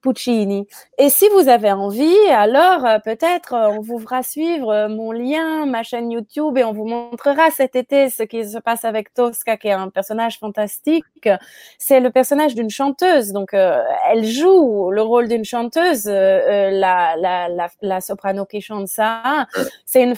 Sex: female